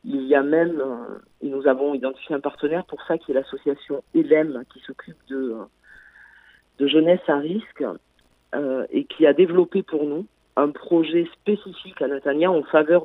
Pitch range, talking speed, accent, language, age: 140-185 Hz, 170 wpm, French, French, 40-59